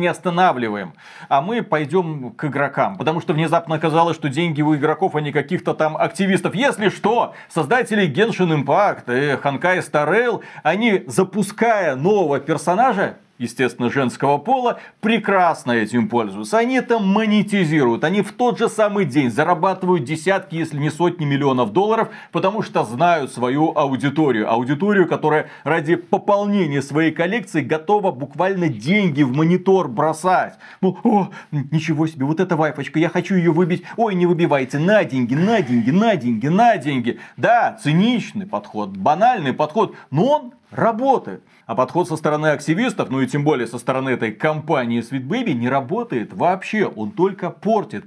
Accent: native